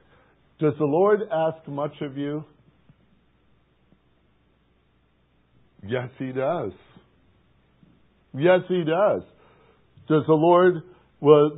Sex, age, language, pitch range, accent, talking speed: male, 60-79, English, 115-155 Hz, American, 90 wpm